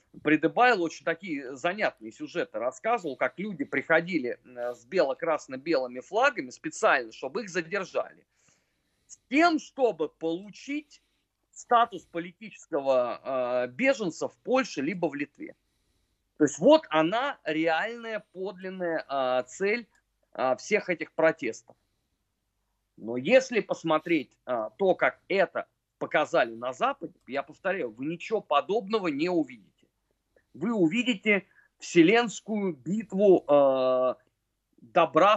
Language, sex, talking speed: Russian, male, 100 wpm